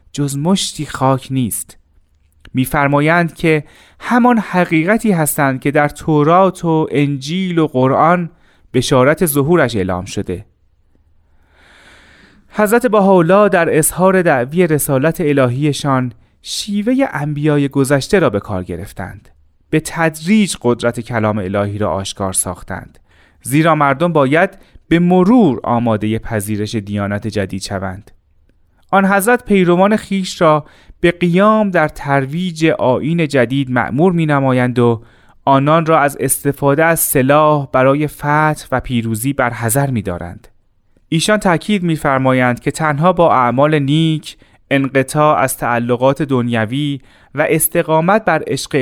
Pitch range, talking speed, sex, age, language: 110-165 Hz, 120 wpm, male, 30-49, Persian